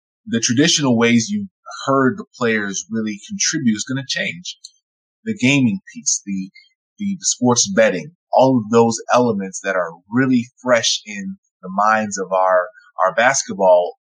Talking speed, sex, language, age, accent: 150 wpm, male, English, 20-39, American